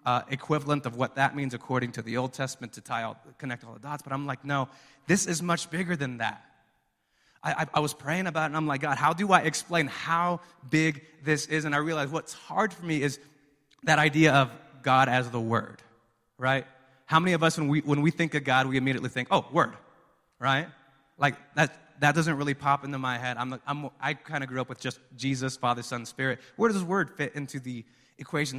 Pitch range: 120-145 Hz